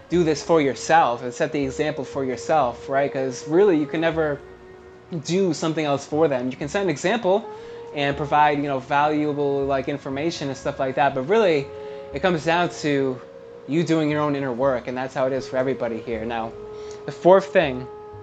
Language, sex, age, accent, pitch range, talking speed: English, male, 20-39, American, 130-160 Hz, 200 wpm